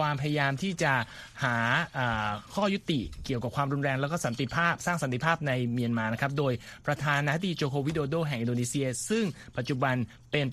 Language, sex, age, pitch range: Thai, male, 30-49, 115-145 Hz